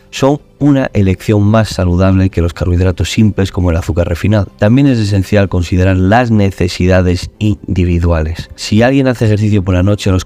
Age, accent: 30-49, Spanish